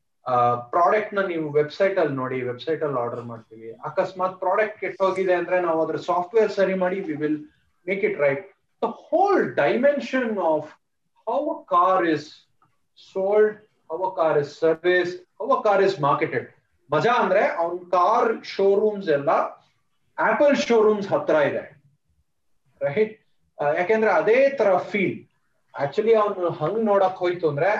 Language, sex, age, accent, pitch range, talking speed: Kannada, male, 30-49, native, 150-210 Hz, 95 wpm